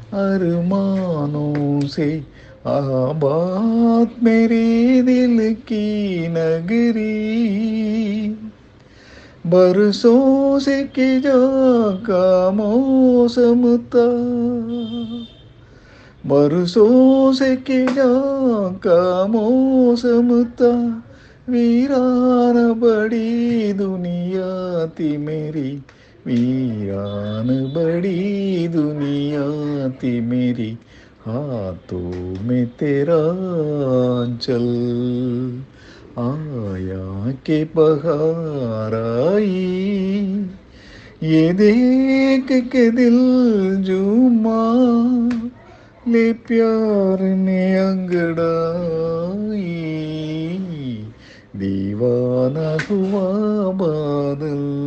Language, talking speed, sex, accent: Tamil, 50 wpm, male, native